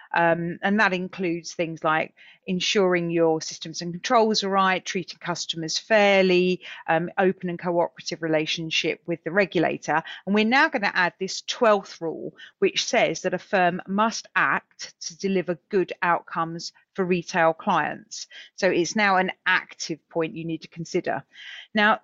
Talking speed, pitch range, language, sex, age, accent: 160 wpm, 170-205 Hz, English, female, 40-59, British